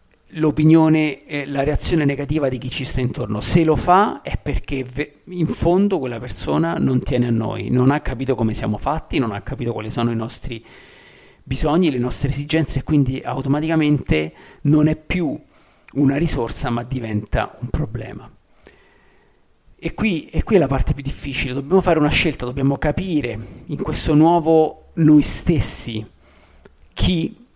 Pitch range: 120-150 Hz